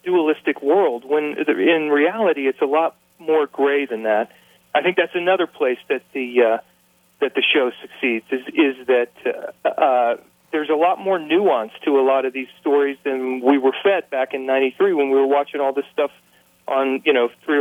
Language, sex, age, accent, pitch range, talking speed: English, male, 40-59, American, 125-155 Hz, 200 wpm